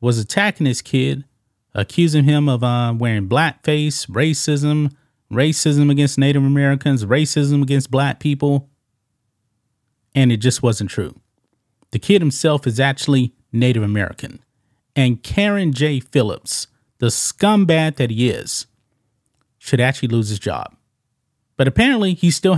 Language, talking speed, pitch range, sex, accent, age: English, 130 wpm, 120-150 Hz, male, American, 30-49